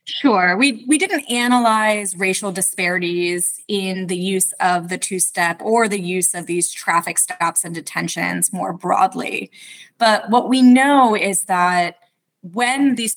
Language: English